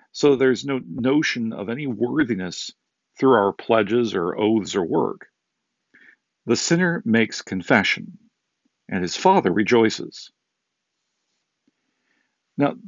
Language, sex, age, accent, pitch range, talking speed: English, male, 50-69, American, 115-150 Hz, 105 wpm